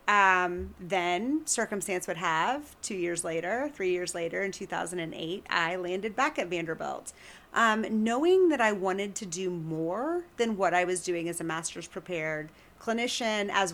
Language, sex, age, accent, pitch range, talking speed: English, female, 30-49, American, 170-215 Hz, 160 wpm